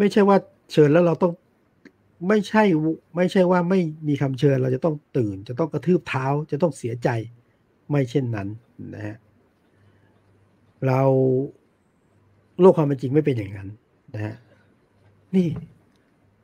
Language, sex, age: Thai, male, 60-79